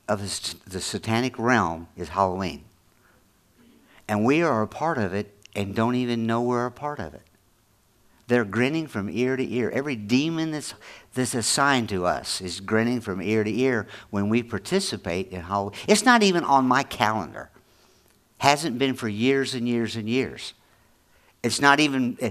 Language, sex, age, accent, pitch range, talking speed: English, male, 50-69, American, 100-125 Hz, 170 wpm